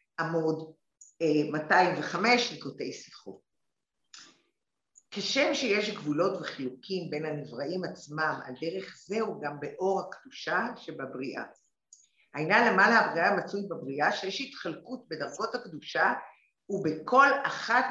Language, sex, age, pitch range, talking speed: English, female, 50-69, 155-250 Hz, 100 wpm